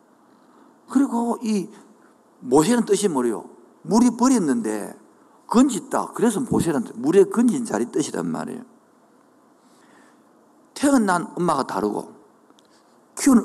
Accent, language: native, Korean